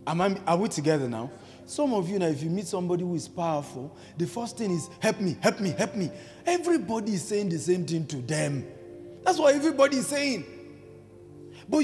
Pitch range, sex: 150-230 Hz, male